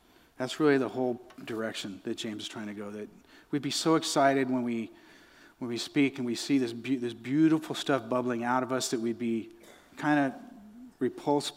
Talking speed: 200 wpm